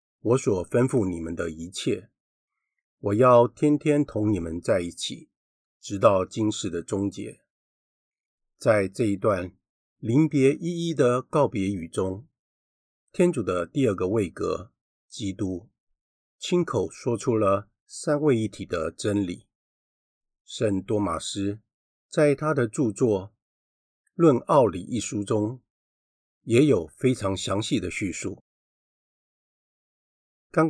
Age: 50-69